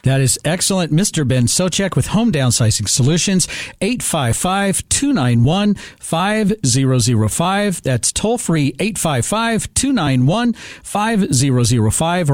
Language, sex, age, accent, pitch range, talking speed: English, male, 50-69, American, 140-195 Hz, 75 wpm